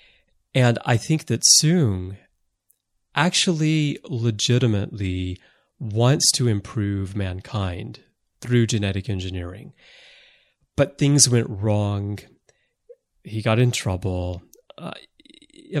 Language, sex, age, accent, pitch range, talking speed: English, male, 30-49, American, 95-120 Hz, 85 wpm